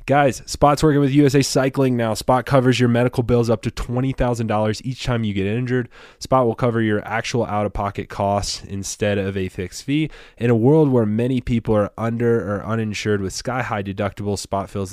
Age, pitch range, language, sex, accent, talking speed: 20-39, 95-120 Hz, English, male, American, 195 wpm